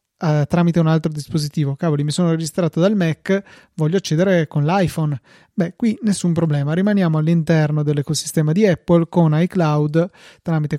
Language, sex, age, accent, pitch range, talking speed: Italian, male, 30-49, native, 155-185 Hz, 145 wpm